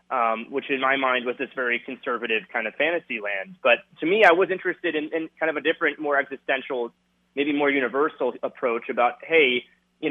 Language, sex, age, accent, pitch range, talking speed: English, male, 20-39, American, 120-150 Hz, 200 wpm